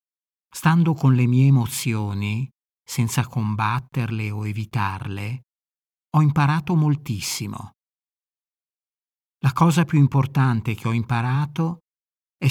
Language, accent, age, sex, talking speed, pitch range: Italian, native, 50-69, male, 95 wpm, 115-145 Hz